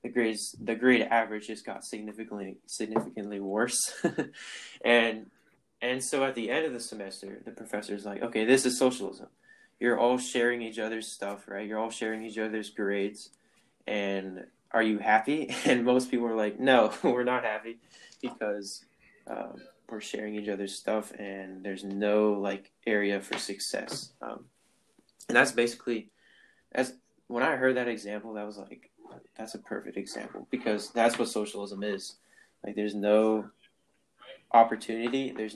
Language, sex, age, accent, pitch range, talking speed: English, male, 20-39, American, 100-115 Hz, 160 wpm